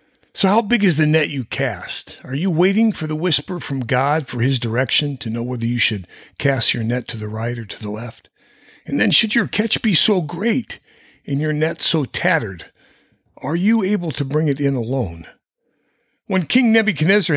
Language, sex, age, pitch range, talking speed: English, male, 50-69, 115-170 Hz, 200 wpm